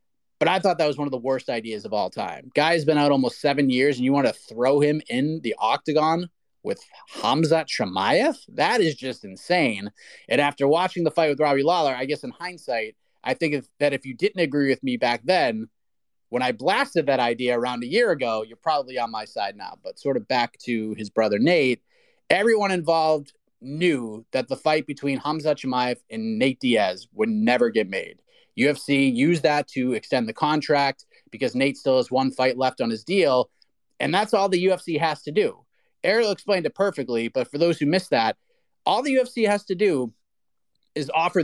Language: English